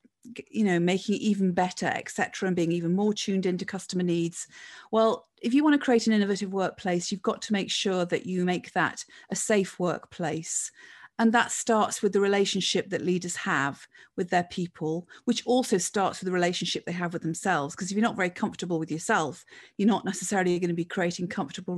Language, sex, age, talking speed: English, female, 40-59, 205 wpm